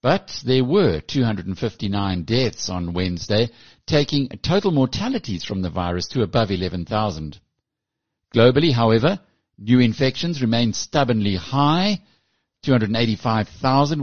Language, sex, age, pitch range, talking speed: English, male, 60-79, 95-130 Hz, 105 wpm